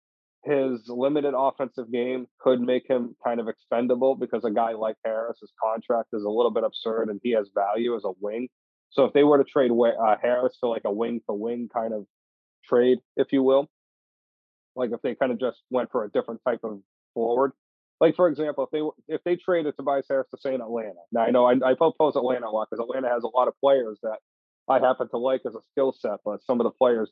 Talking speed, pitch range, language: 230 wpm, 115-140 Hz, English